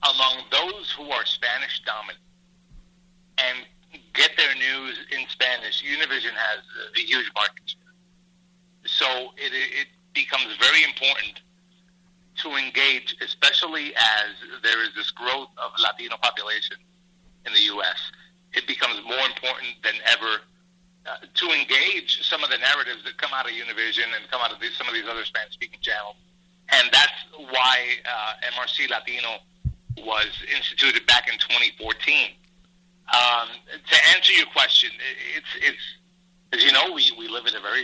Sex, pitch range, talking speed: male, 130-180 Hz, 145 wpm